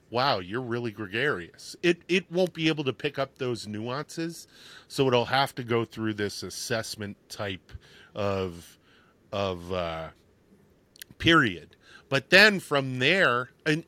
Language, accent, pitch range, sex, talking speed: English, American, 105-135 Hz, male, 140 wpm